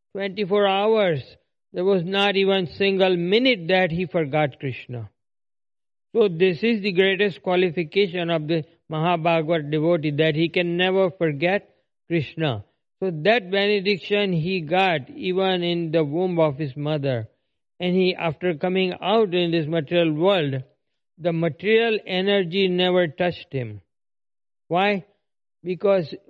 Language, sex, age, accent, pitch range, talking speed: English, male, 50-69, Indian, 155-195 Hz, 130 wpm